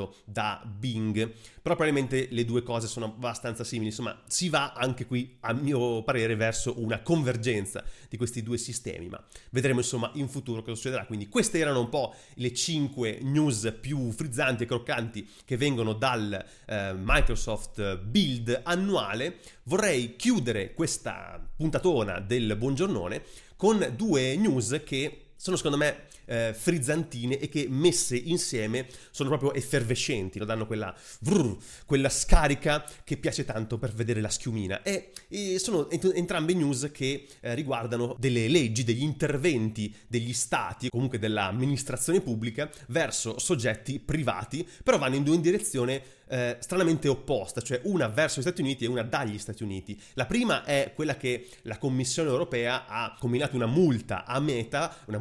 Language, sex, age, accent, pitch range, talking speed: Italian, male, 30-49, native, 115-150 Hz, 150 wpm